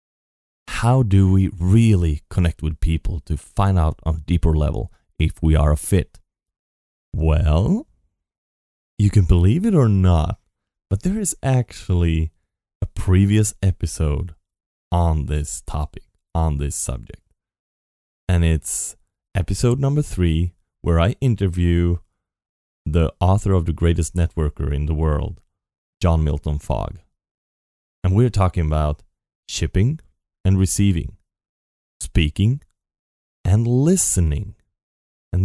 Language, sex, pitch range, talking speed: English, male, 80-100 Hz, 120 wpm